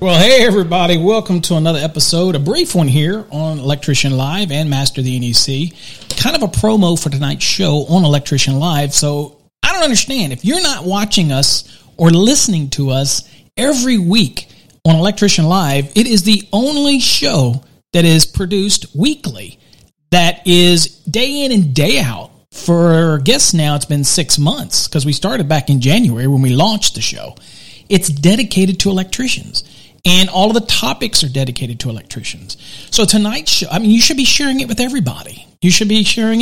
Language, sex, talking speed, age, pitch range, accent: English, male, 180 wpm, 40-59, 150-210 Hz, American